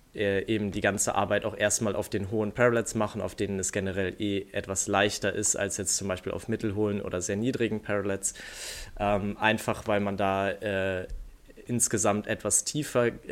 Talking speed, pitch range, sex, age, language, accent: 175 wpm, 100-115 Hz, male, 20-39, German, German